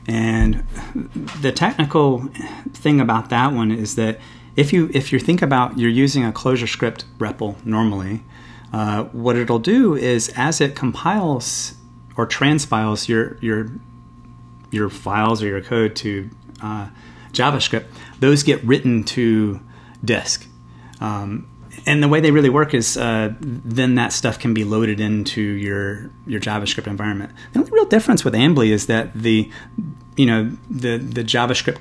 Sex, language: male, English